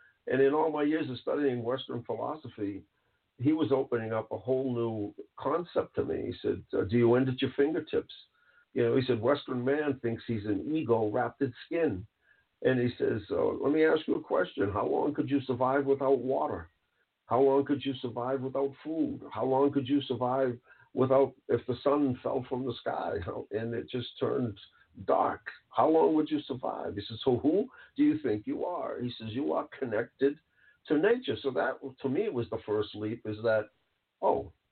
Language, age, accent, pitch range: English, 50-69, American, 115-140 Hz